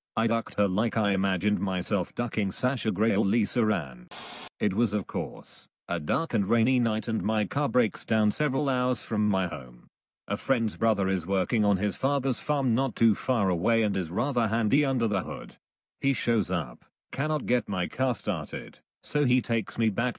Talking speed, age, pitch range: 195 wpm, 40-59, 100-125 Hz